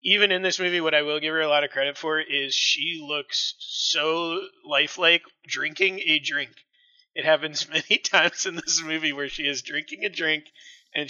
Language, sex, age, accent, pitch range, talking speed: English, male, 20-39, American, 135-190 Hz, 195 wpm